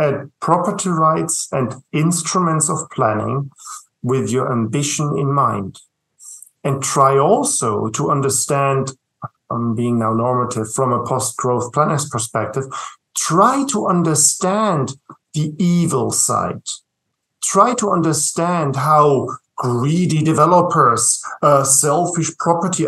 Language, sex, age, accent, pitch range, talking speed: English, male, 50-69, German, 135-175 Hz, 110 wpm